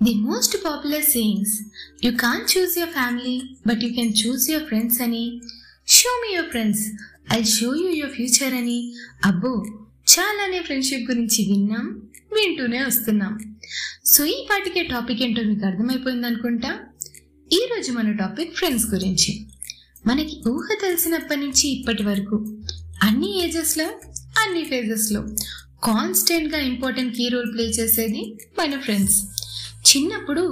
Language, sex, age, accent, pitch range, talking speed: Telugu, female, 20-39, native, 215-295 Hz, 160 wpm